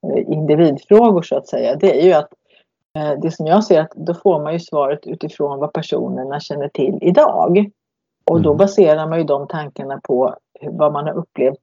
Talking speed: 185 wpm